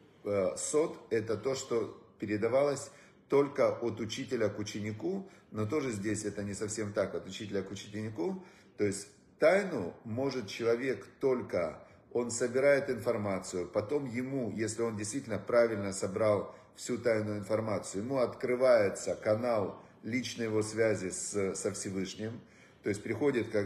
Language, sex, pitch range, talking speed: Russian, male, 105-125 Hz, 135 wpm